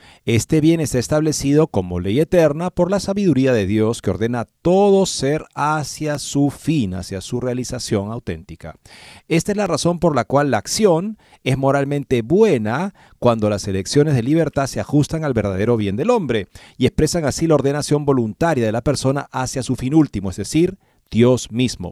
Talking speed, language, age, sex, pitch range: 175 wpm, Spanish, 40-59, male, 110-155 Hz